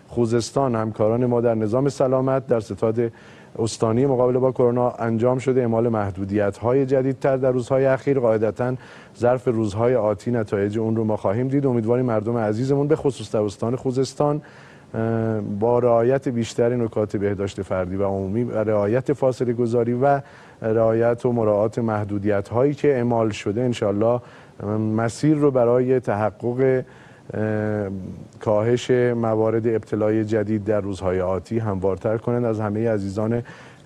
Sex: male